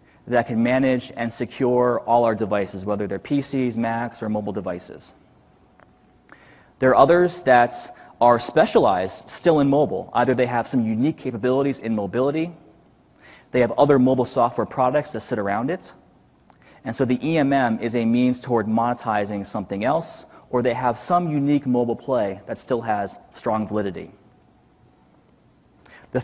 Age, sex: 30-49, male